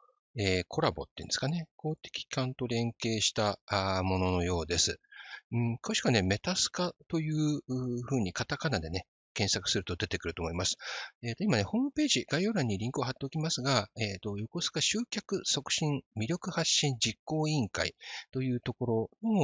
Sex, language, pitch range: male, Japanese, 100-155 Hz